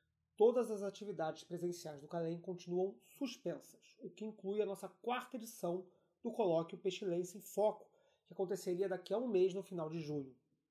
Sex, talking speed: male, 170 wpm